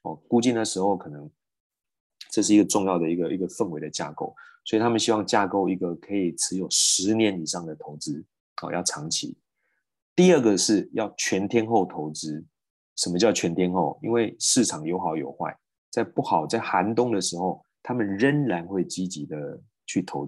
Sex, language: male, Chinese